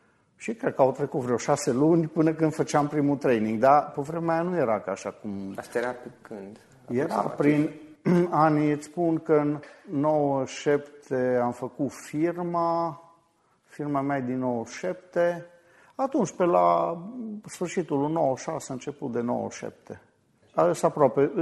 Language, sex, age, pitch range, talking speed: Romanian, male, 50-69, 130-175 Hz, 145 wpm